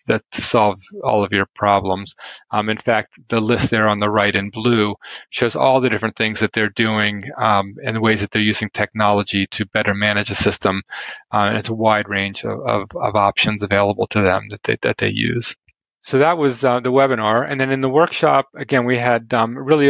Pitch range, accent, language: 105-125 Hz, American, English